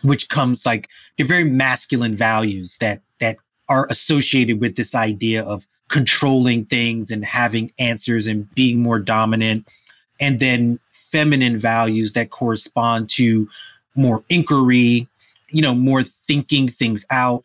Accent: American